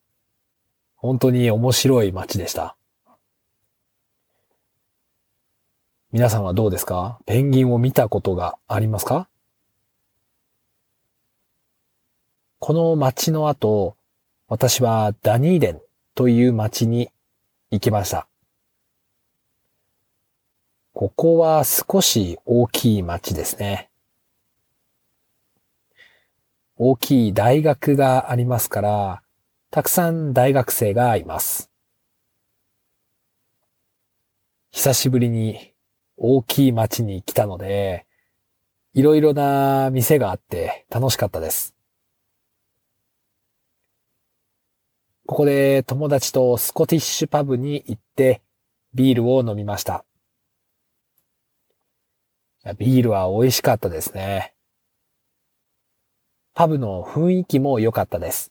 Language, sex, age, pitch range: English, male, 40-59, 105-130 Hz